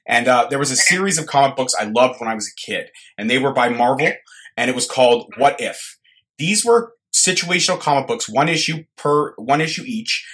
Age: 30-49